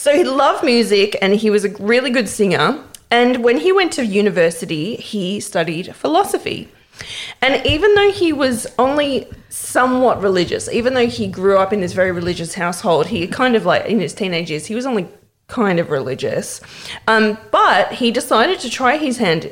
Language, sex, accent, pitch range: English, female, Australian, 175-240 Hz